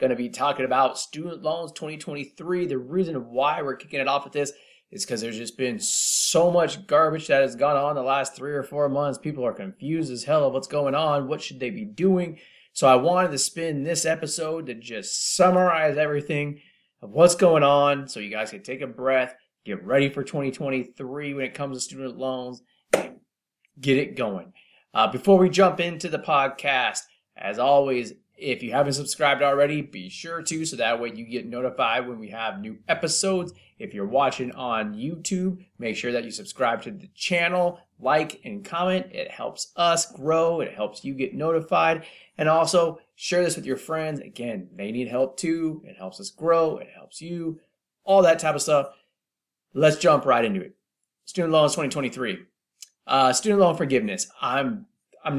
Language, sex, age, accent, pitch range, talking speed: English, male, 30-49, American, 135-170 Hz, 190 wpm